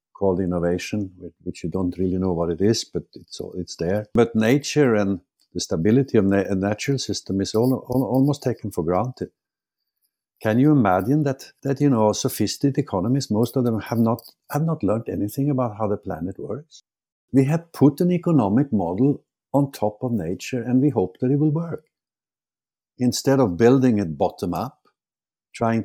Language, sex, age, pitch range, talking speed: English, male, 60-79, 100-130 Hz, 180 wpm